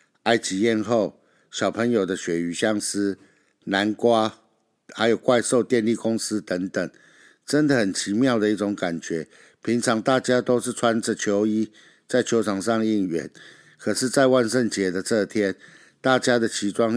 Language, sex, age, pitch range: Chinese, male, 60-79, 105-125 Hz